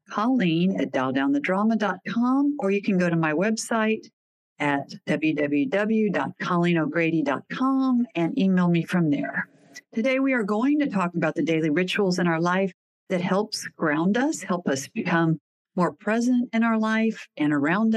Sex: female